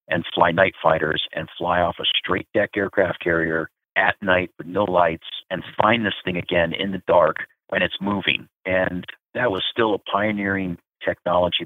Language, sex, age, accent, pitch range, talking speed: English, male, 50-69, American, 85-100 Hz, 180 wpm